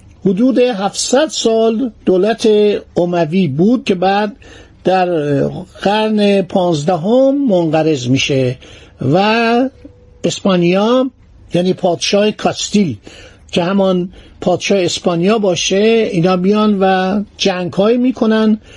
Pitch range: 170-225 Hz